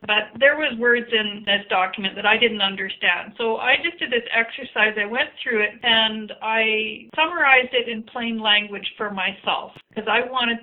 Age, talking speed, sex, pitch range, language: 50-69, 185 wpm, female, 210-260 Hz, English